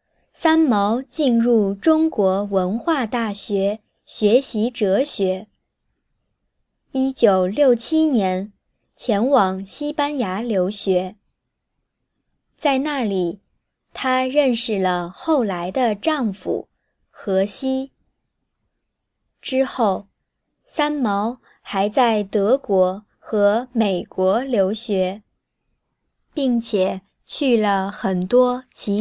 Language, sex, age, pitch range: Chinese, male, 20-39, 195-265 Hz